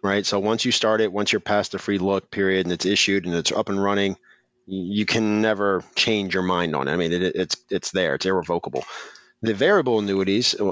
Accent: American